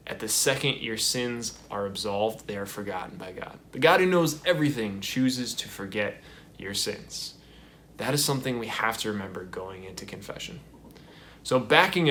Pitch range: 110-140 Hz